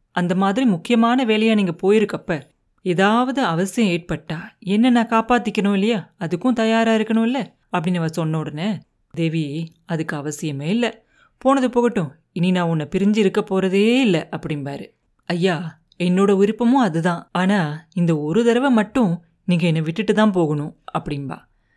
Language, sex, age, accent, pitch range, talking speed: Tamil, female, 30-49, native, 170-220 Hz, 130 wpm